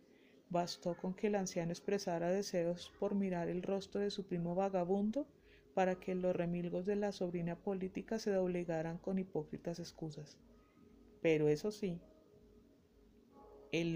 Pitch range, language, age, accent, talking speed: 170-195 Hz, Spanish, 30-49, Colombian, 140 wpm